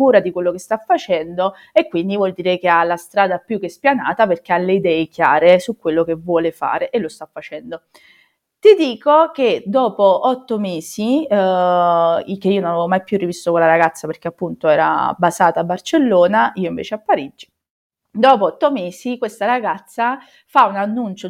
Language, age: Italian, 20-39